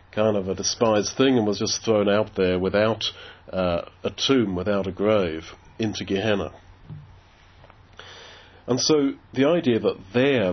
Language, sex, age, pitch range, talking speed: English, male, 50-69, 95-115 Hz, 150 wpm